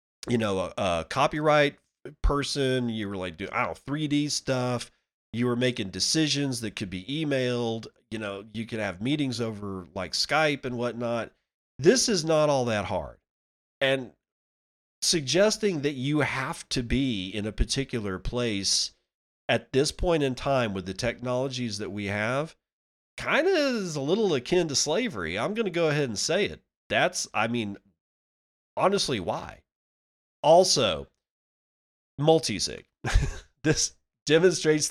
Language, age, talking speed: English, 40-59, 150 wpm